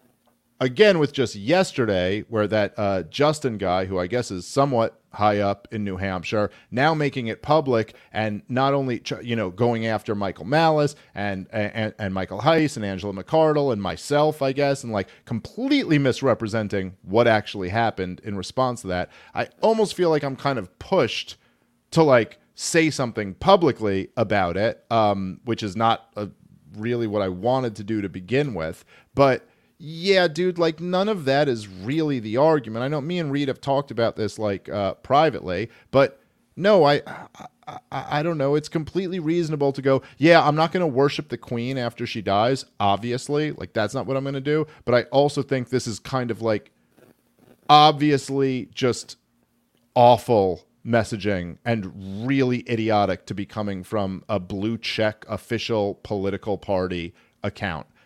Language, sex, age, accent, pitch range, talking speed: English, male, 40-59, American, 100-140 Hz, 170 wpm